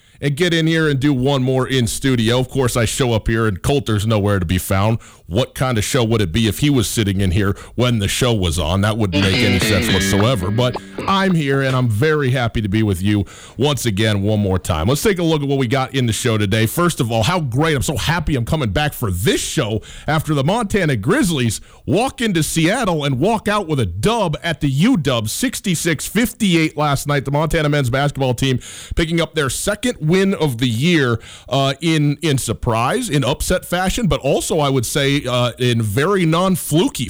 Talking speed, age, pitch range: 220 wpm, 40-59, 110-155 Hz